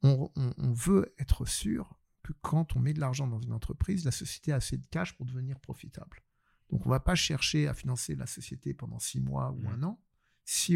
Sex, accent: male, French